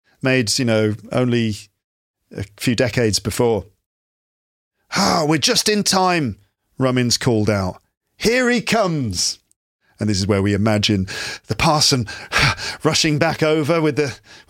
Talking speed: 135 wpm